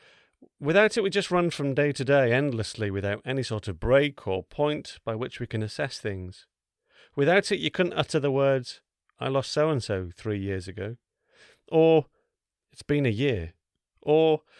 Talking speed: 175 wpm